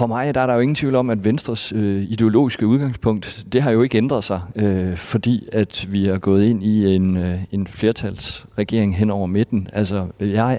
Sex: male